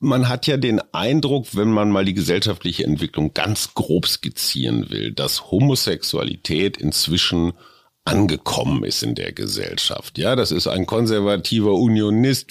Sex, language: male, German